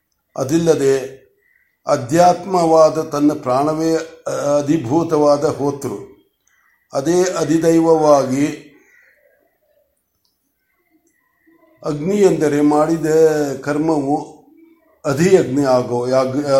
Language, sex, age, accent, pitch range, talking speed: Kannada, male, 60-79, native, 145-185 Hz, 50 wpm